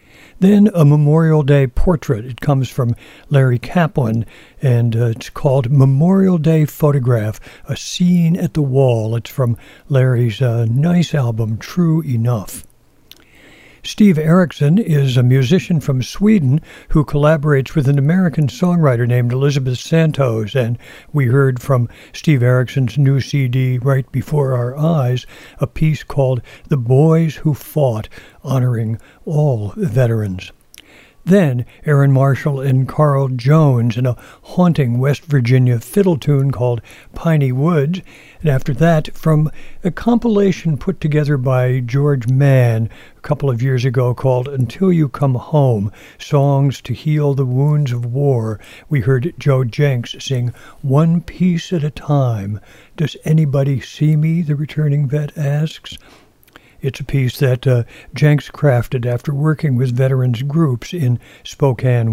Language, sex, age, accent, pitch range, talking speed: English, male, 60-79, American, 125-155 Hz, 140 wpm